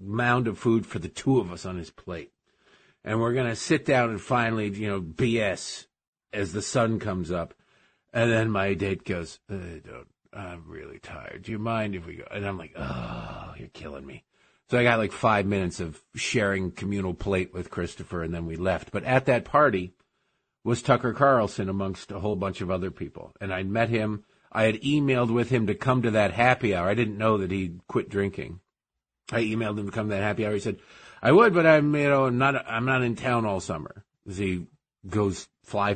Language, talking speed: English, 215 wpm